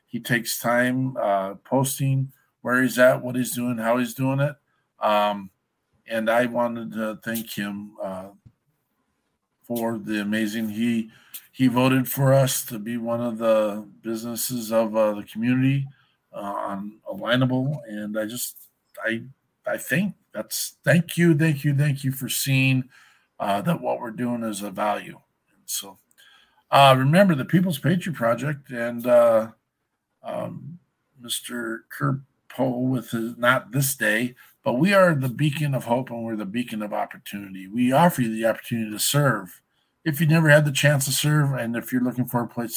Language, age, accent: English, 50-69, American